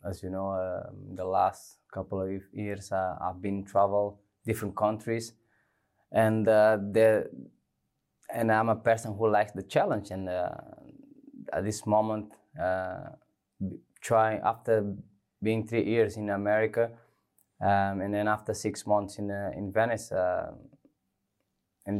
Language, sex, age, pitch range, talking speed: English, male, 20-39, 100-115 Hz, 140 wpm